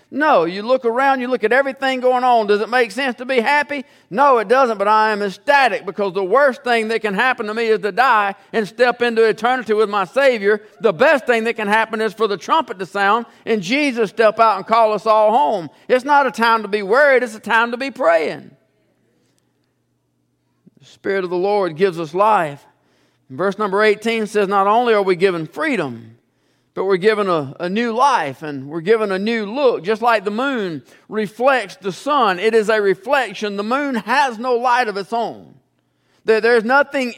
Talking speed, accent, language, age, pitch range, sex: 210 wpm, American, English, 50-69, 200-255 Hz, male